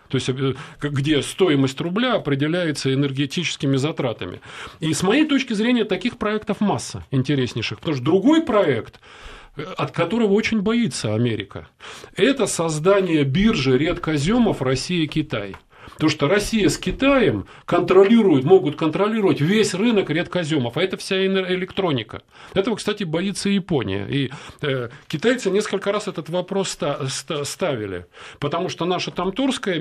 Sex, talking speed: male, 125 wpm